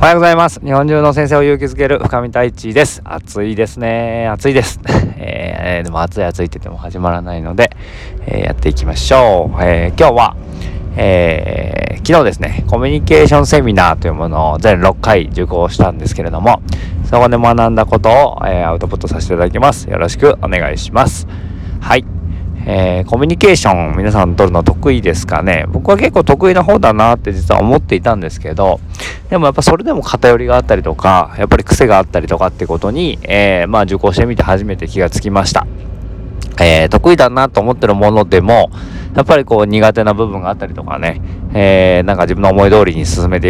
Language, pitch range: Japanese, 85-115 Hz